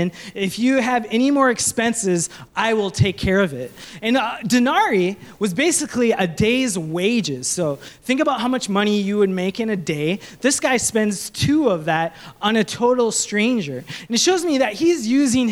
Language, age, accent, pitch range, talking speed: English, 20-39, American, 195-255 Hz, 190 wpm